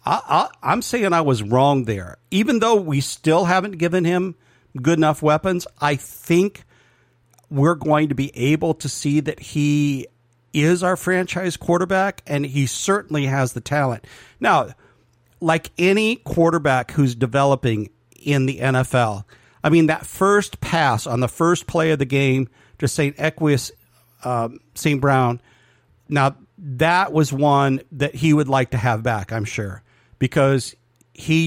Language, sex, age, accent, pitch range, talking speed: English, male, 50-69, American, 125-155 Hz, 150 wpm